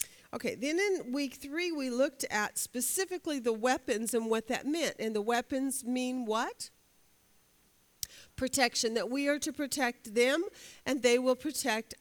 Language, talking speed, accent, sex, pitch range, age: English, 155 wpm, American, female, 210-270 Hz, 50-69